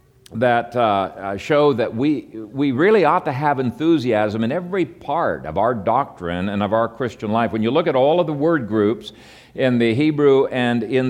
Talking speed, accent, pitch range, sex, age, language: 195 wpm, American, 105-140 Hz, male, 50-69, English